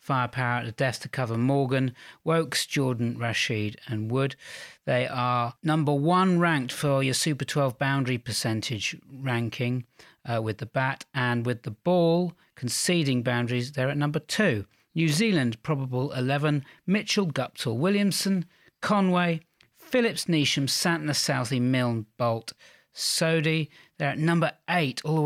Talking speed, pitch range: 140 wpm, 125-150 Hz